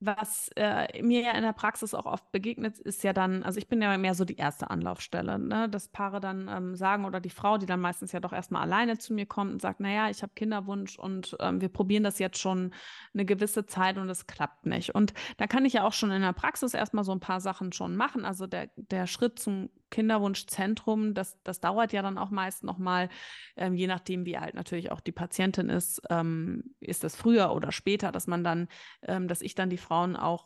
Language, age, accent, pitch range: German, 20-39, German, 175-205 Hz